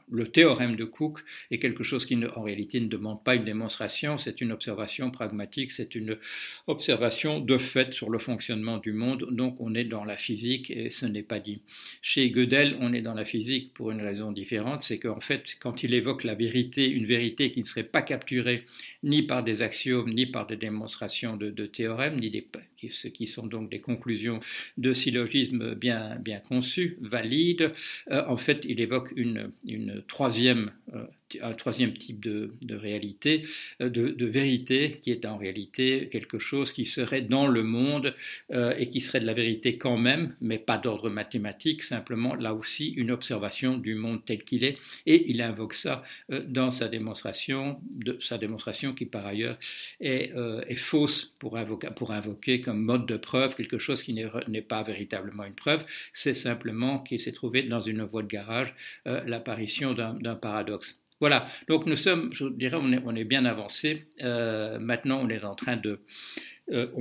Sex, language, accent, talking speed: male, French, French, 185 wpm